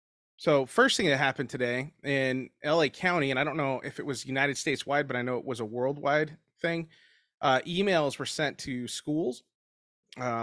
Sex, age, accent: male, 30-49, American